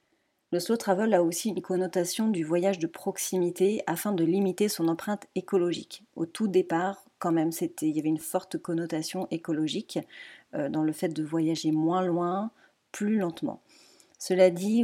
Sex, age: female, 40-59